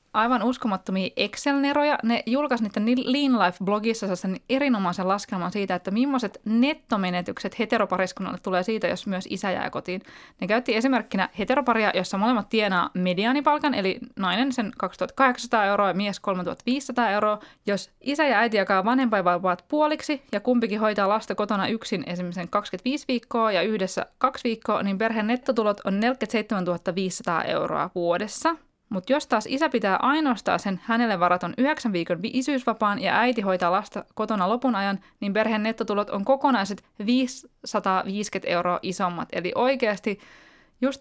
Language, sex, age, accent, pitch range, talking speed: Finnish, female, 20-39, native, 190-250 Hz, 140 wpm